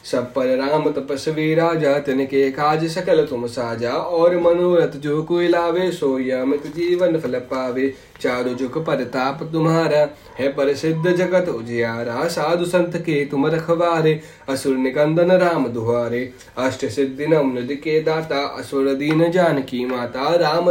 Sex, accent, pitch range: male, native, 130-165 Hz